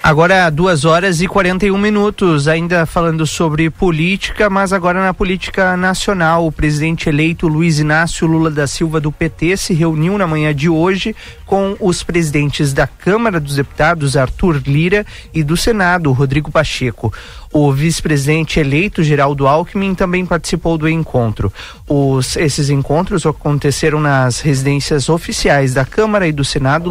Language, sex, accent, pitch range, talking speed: Portuguese, male, Brazilian, 140-175 Hz, 150 wpm